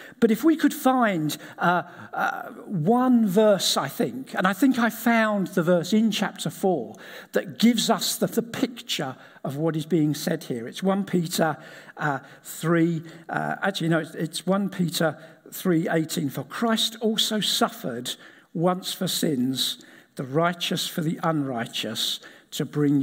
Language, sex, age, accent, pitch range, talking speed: English, male, 50-69, British, 155-205 Hz, 160 wpm